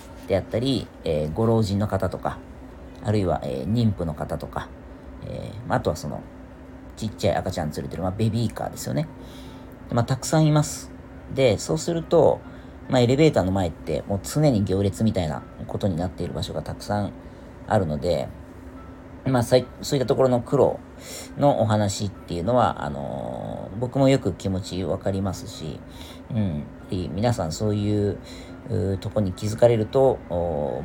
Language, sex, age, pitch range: Japanese, female, 40-59, 85-130 Hz